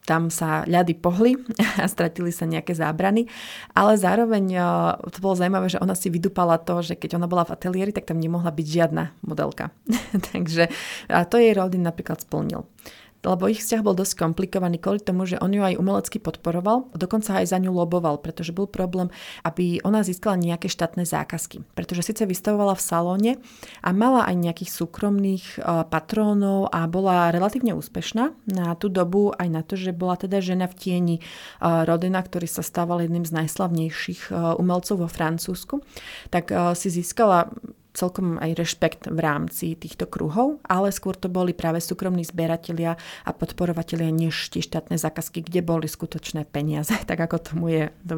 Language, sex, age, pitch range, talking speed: Slovak, female, 30-49, 165-195 Hz, 175 wpm